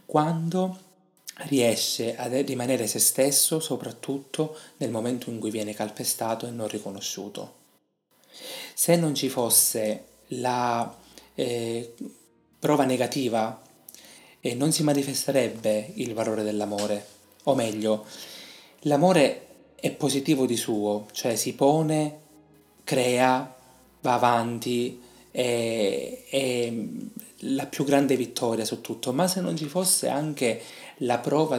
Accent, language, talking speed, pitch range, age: native, Italian, 110 wpm, 110-135 Hz, 30-49